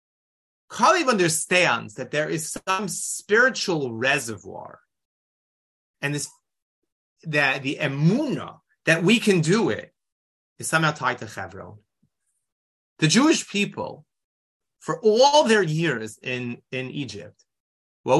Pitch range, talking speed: 105-160 Hz, 110 wpm